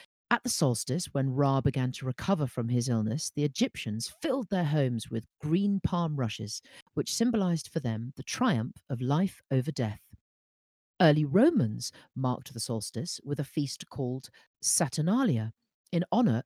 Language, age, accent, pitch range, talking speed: English, 40-59, British, 120-170 Hz, 155 wpm